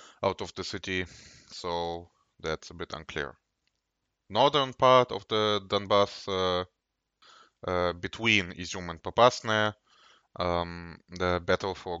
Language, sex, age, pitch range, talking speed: English, male, 20-39, 85-105 Hz, 120 wpm